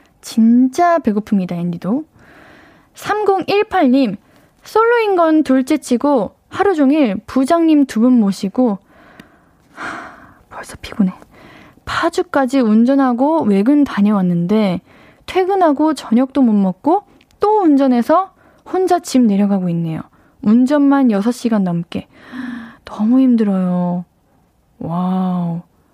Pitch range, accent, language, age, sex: 210-280 Hz, native, Korean, 20-39, female